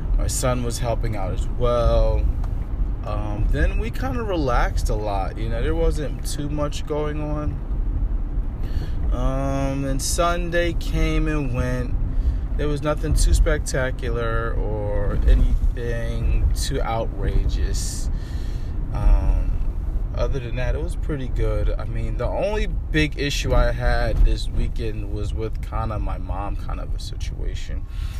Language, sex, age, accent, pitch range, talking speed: English, male, 20-39, American, 90-120 Hz, 140 wpm